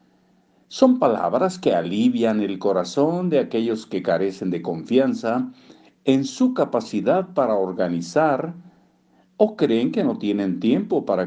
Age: 50-69